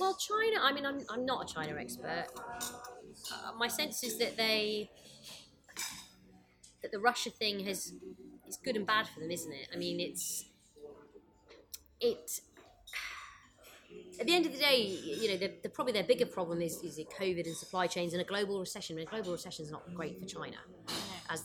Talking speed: 190 wpm